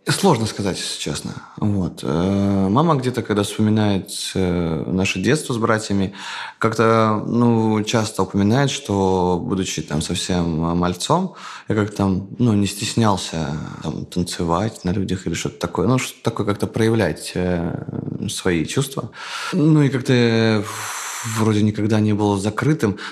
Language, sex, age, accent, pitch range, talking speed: Russian, male, 20-39, native, 95-120 Hz, 125 wpm